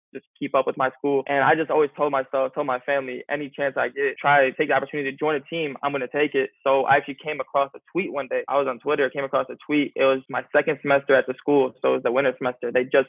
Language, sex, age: English, male, 20-39